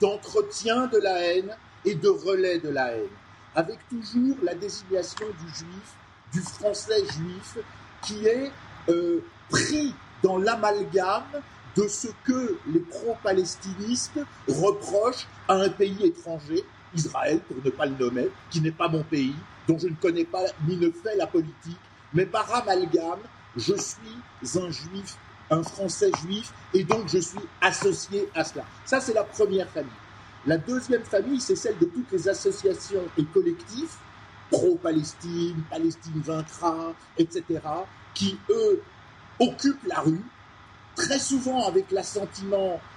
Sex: male